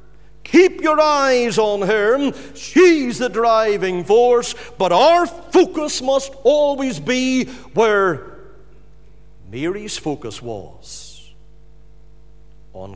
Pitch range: 155-250 Hz